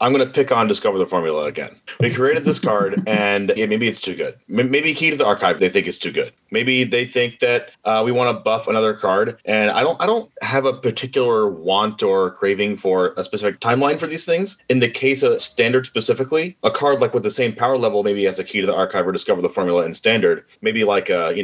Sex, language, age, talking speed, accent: male, English, 30-49, 245 wpm, American